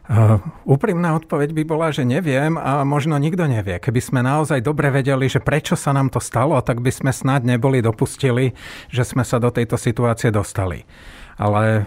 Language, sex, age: Slovak, male, 40-59